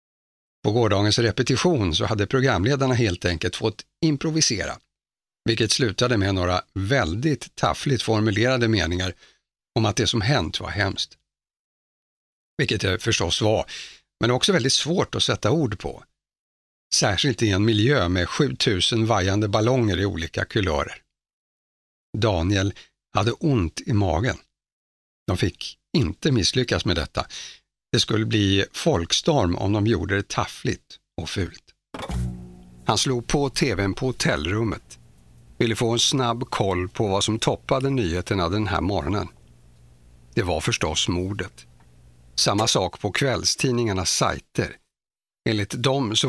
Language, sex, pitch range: Swedish, male, 90-125 Hz